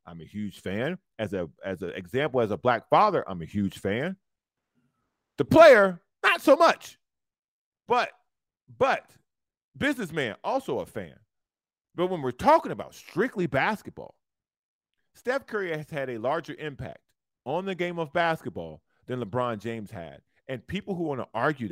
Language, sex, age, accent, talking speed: English, male, 40-59, American, 155 wpm